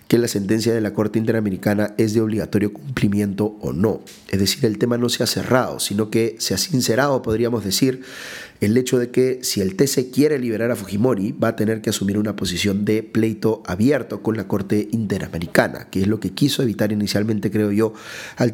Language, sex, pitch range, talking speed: Spanish, male, 105-120 Hz, 205 wpm